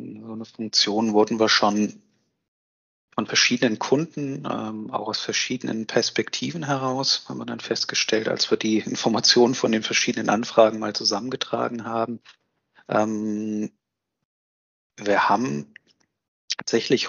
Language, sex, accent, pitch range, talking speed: German, male, German, 105-115 Hz, 110 wpm